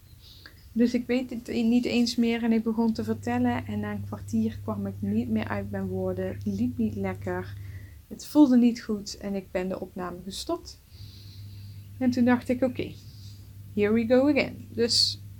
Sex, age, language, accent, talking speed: female, 20-39, English, Dutch, 185 wpm